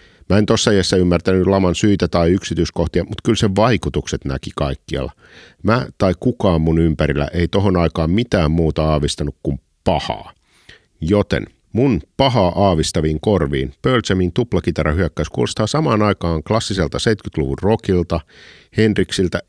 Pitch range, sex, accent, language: 80-105 Hz, male, native, Finnish